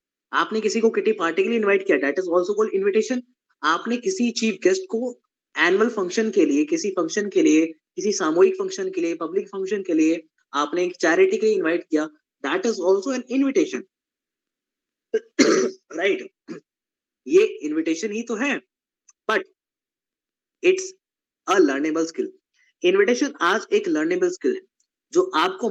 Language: Hindi